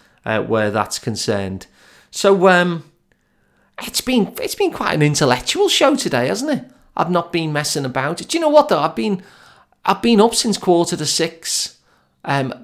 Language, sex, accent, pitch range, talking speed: English, male, British, 130-195 Hz, 180 wpm